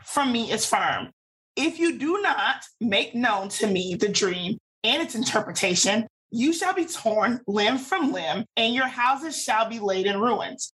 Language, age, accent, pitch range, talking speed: English, 30-49, American, 210-270 Hz, 180 wpm